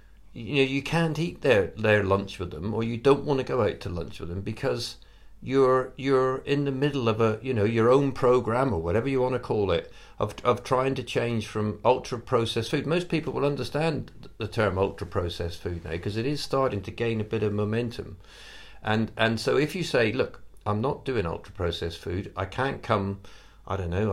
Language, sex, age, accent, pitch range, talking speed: English, male, 50-69, British, 100-130 Hz, 220 wpm